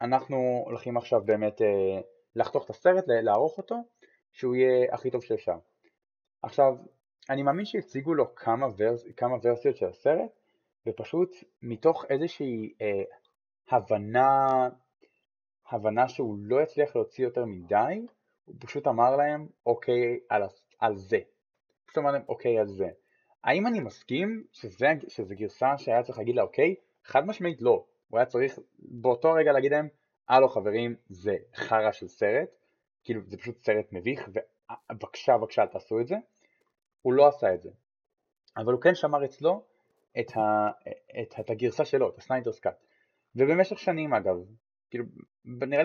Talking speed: 145 wpm